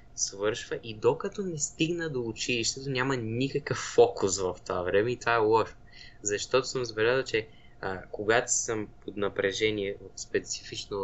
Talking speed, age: 145 wpm, 20-39